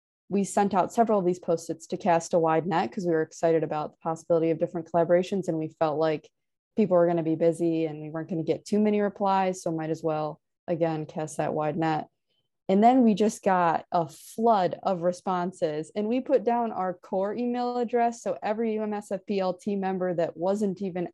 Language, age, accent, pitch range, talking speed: English, 20-39, American, 170-215 Hz, 215 wpm